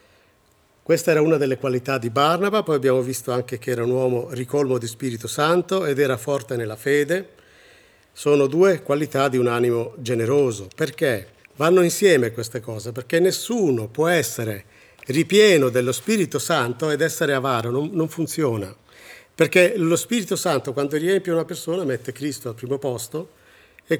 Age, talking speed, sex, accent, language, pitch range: 50-69, 160 wpm, male, native, Italian, 120-160 Hz